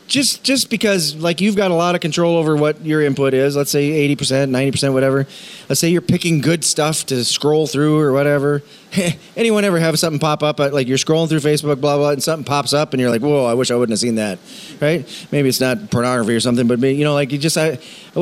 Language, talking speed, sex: English, 255 wpm, male